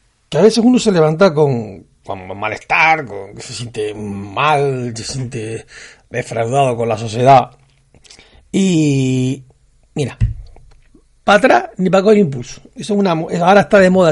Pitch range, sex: 130-190 Hz, male